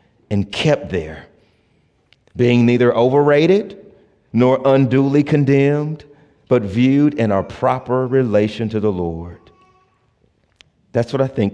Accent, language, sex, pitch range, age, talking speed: American, English, male, 95-125 Hz, 40-59, 115 wpm